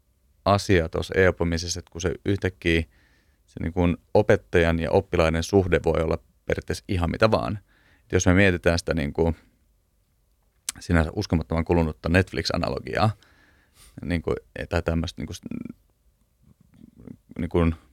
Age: 30-49